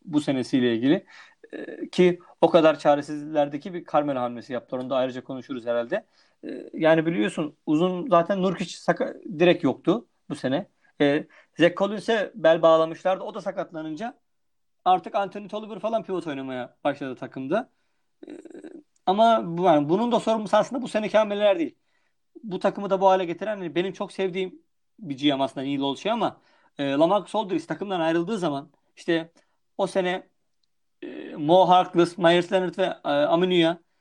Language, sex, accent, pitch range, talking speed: Turkish, male, native, 155-210 Hz, 150 wpm